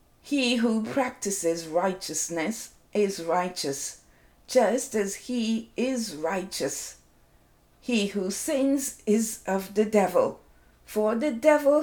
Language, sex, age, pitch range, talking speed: English, female, 50-69, 200-270 Hz, 105 wpm